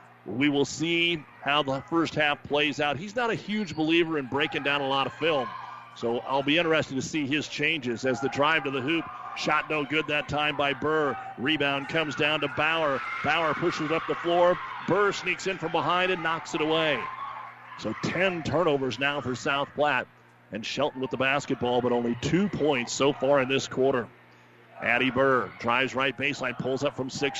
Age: 40-59